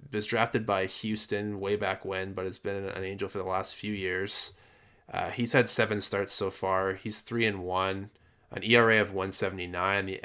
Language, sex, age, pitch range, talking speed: English, male, 20-39, 95-110 Hz, 200 wpm